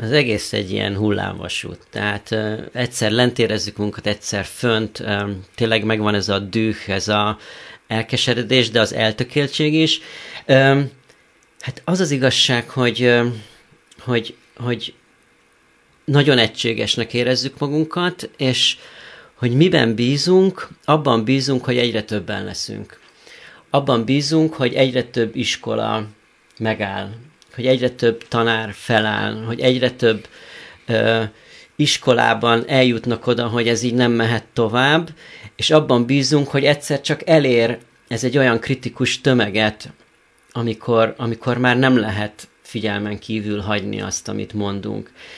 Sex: male